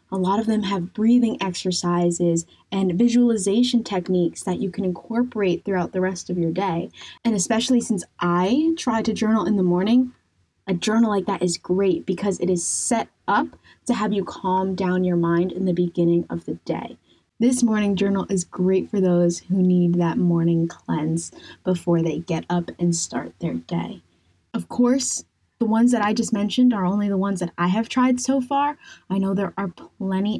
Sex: female